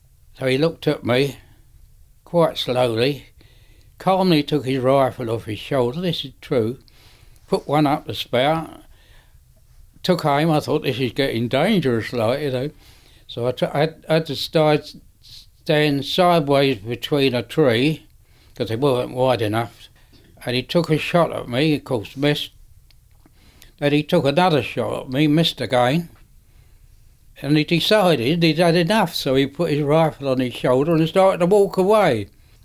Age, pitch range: 60-79, 115-155 Hz